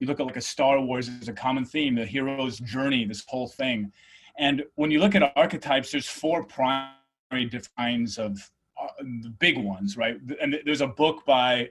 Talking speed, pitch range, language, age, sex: 190 wpm, 120-150 Hz, English, 30-49, male